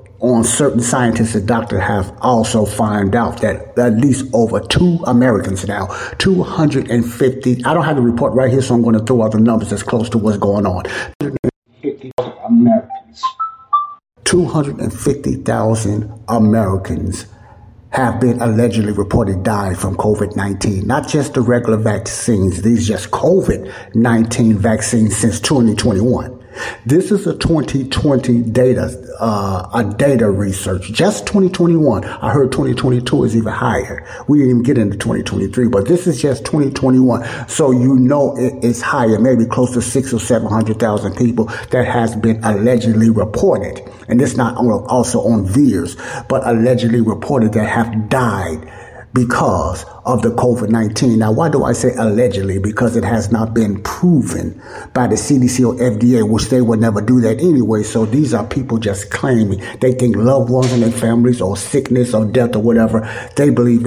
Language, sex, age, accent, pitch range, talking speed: English, male, 60-79, American, 105-125 Hz, 160 wpm